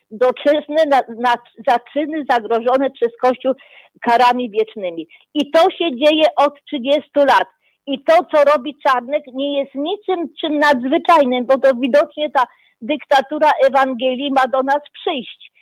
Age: 40-59